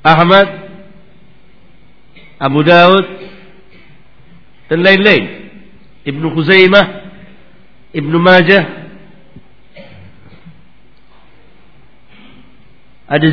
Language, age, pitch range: Swahili, 50-69, 150-185 Hz